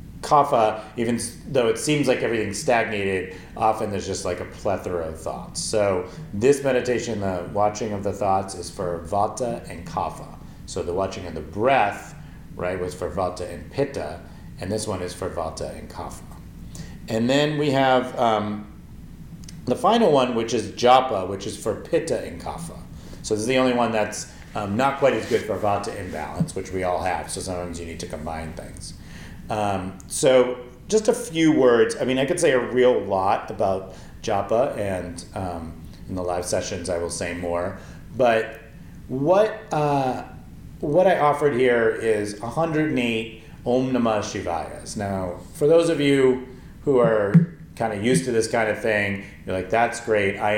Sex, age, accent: male, 40-59, American